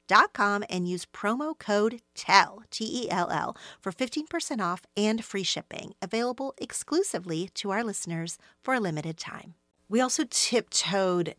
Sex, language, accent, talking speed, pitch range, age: female, English, American, 130 wpm, 155-195 Hz, 40-59